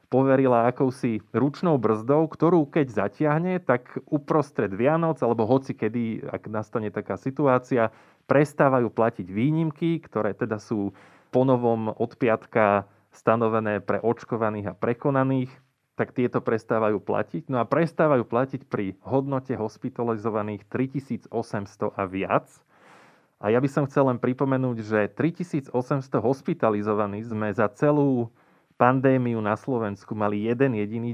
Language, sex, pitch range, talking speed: Slovak, male, 110-140 Hz, 120 wpm